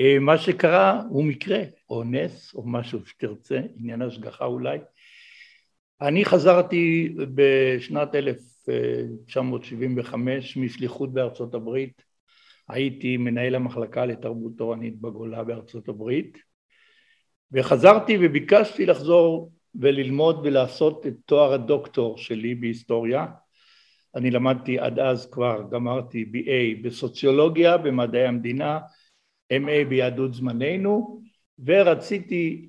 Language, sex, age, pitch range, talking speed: Hebrew, male, 60-79, 120-155 Hz, 95 wpm